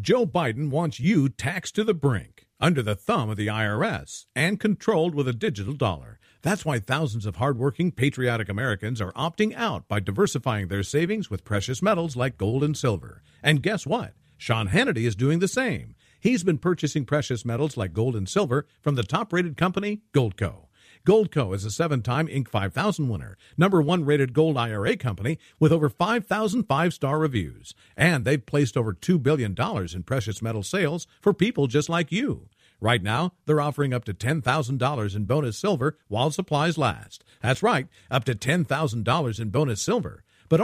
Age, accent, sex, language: 50-69, American, male, English